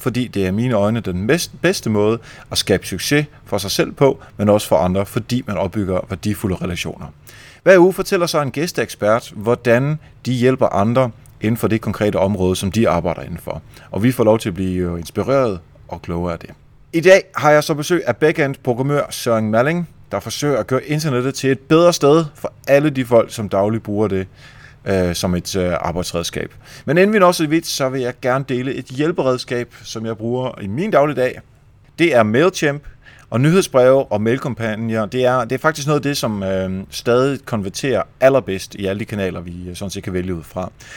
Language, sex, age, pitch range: Danish, male, 30-49, 100-135 Hz